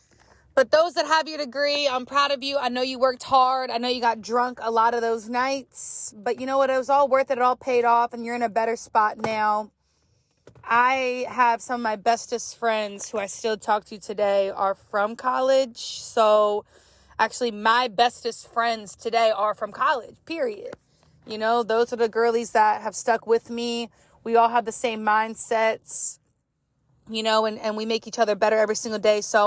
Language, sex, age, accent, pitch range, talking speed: English, female, 20-39, American, 220-270 Hz, 205 wpm